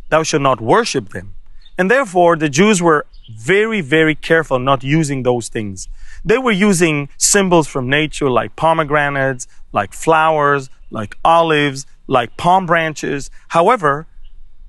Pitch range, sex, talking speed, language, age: 130-175 Hz, male, 135 wpm, English, 30-49